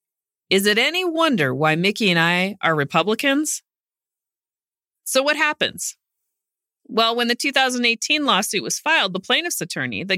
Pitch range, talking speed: 160-230 Hz, 140 wpm